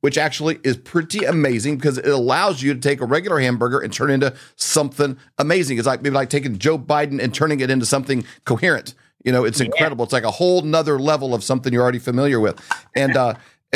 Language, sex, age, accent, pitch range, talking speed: English, male, 40-59, American, 130-155 Hz, 225 wpm